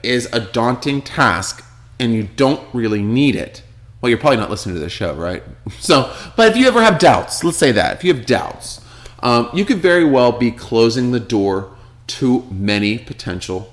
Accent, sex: American, male